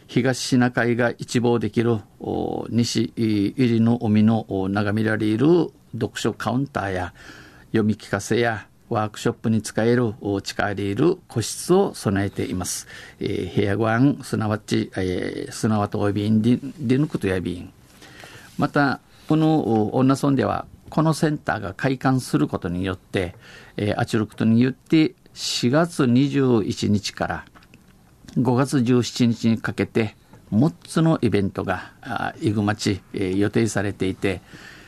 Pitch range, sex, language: 105-125 Hz, male, Japanese